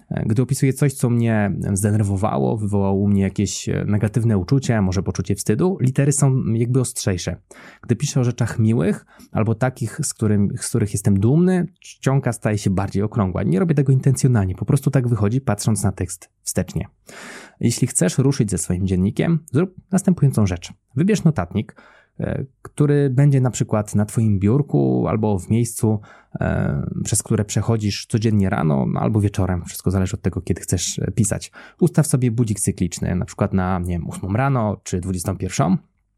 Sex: male